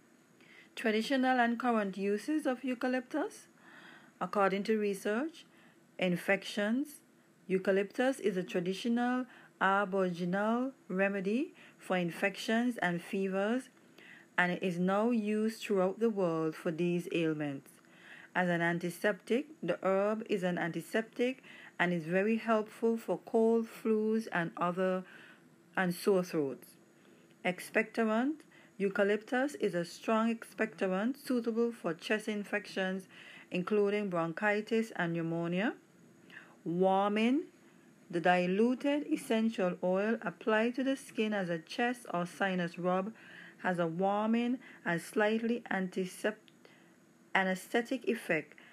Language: English